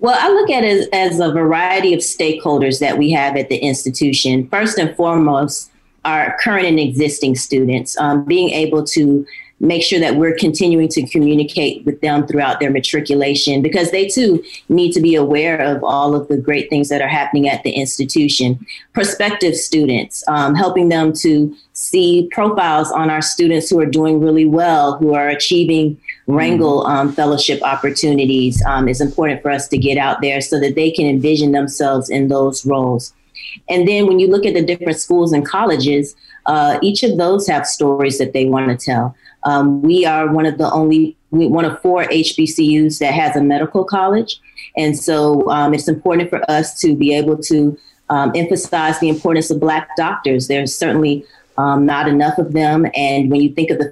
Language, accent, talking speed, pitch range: English, American, 190 wpm, 140-170 Hz